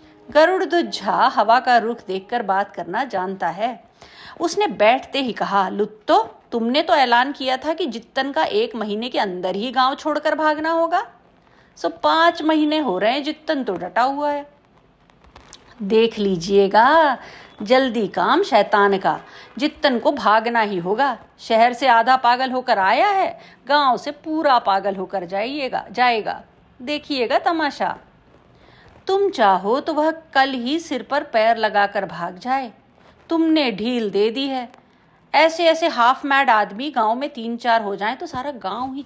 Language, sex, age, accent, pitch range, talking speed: Hindi, female, 50-69, native, 205-295 Hz, 160 wpm